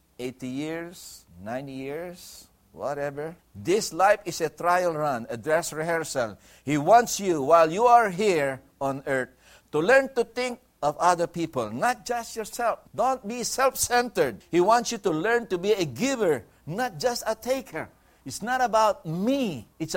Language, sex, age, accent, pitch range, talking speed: English, male, 60-79, Filipino, 135-225 Hz, 160 wpm